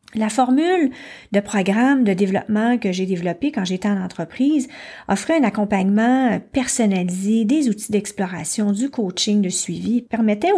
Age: 40-59